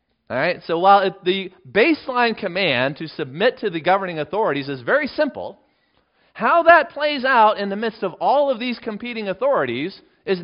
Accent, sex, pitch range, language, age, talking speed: American, male, 140-235 Hz, English, 40-59, 180 wpm